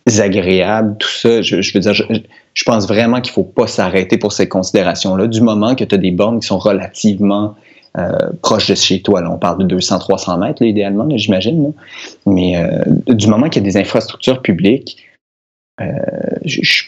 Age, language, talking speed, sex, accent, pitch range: 30-49, French, 205 wpm, male, Canadian, 100-125 Hz